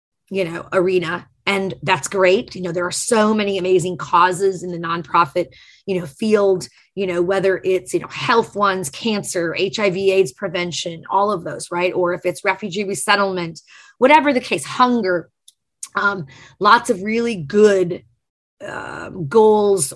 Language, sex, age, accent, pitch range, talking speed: English, female, 30-49, American, 175-200 Hz, 155 wpm